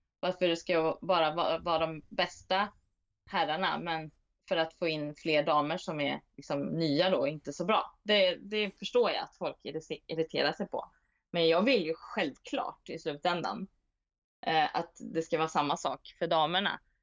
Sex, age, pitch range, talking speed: female, 20-39, 155-200 Hz, 170 wpm